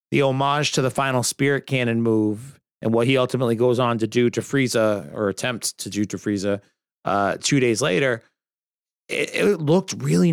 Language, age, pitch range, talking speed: English, 30-49, 115-145 Hz, 185 wpm